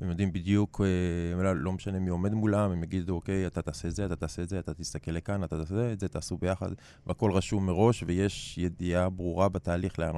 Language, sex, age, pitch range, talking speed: Hebrew, male, 20-39, 80-95 Hz, 210 wpm